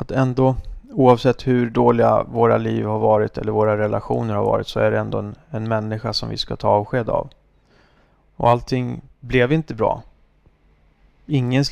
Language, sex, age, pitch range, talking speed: Swedish, male, 30-49, 105-125 Hz, 170 wpm